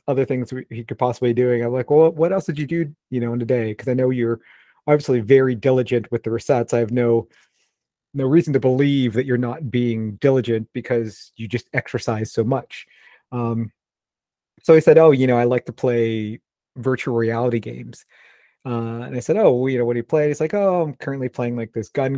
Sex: male